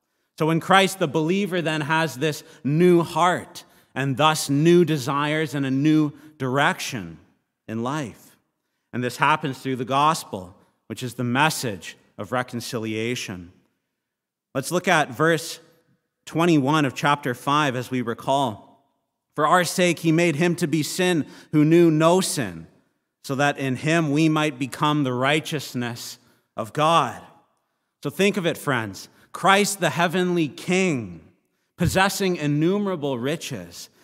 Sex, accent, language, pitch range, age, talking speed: male, American, English, 125-160 Hz, 40-59, 140 wpm